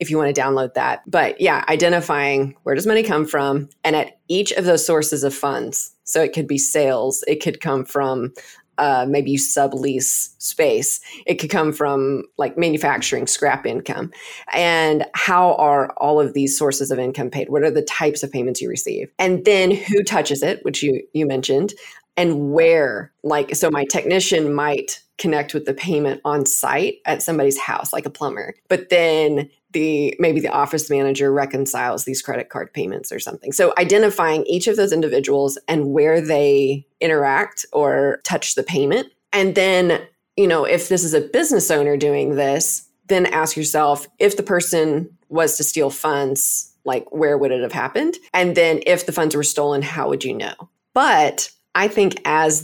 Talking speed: 185 wpm